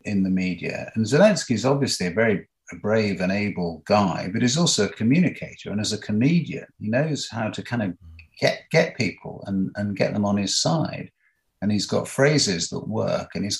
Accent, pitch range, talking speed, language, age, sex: British, 95-130 Hz, 205 wpm, English, 50-69, male